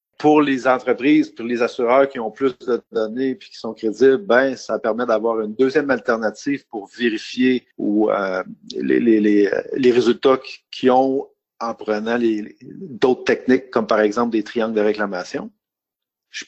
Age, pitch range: 50-69, 105-130 Hz